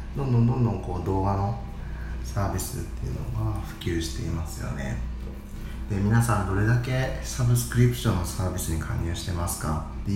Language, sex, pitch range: Japanese, male, 70-110 Hz